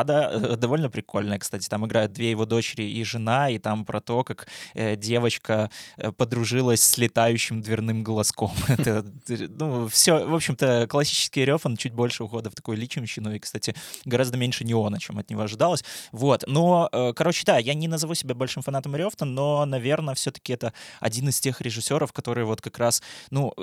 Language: Russian